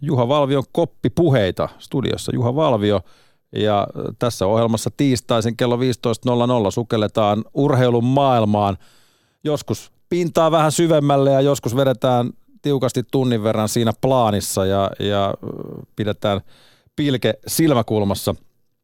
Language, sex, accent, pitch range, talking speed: Finnish, male, native, 105-130 Hz, 105 wpm